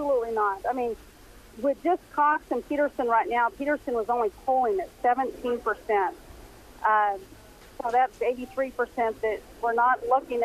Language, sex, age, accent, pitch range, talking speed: English, female, 40-59, American, 220-265 Hz, 150 wpm